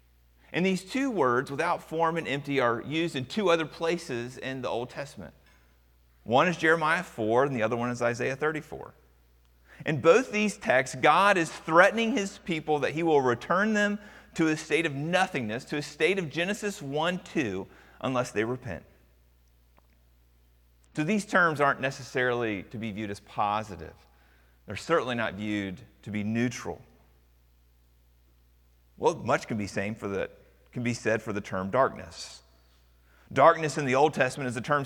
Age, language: 30-49, English